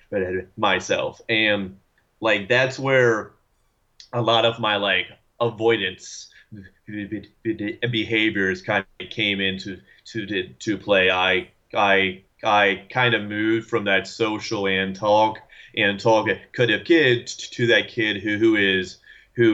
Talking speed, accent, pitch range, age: 130 wpm, American, 95-115 Hz, 30-49